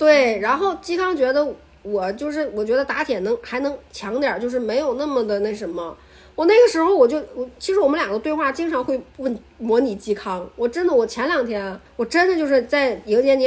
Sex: female